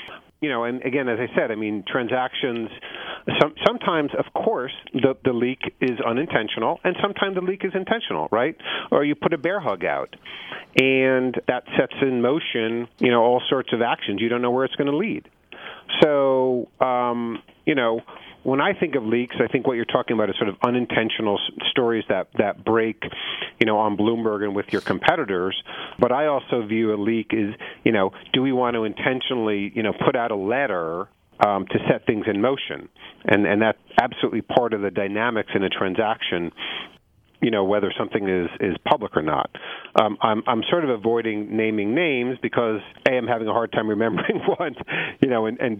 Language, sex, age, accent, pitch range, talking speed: English, male, 40-59, American, 105-130 Hz, 195 wpm